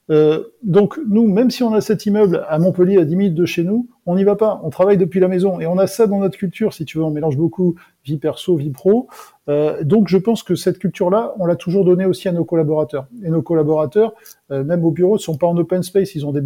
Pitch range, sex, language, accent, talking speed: 145-190 Hz, male, French, French, 275 wpm